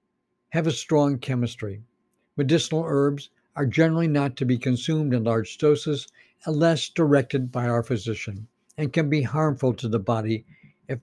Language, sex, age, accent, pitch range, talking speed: English, male, 60-79, American, 120-155 Hz, 150 wpm